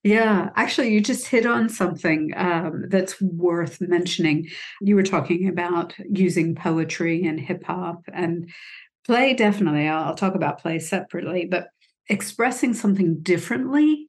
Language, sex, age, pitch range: English, female, 60-79, 165-210 Hz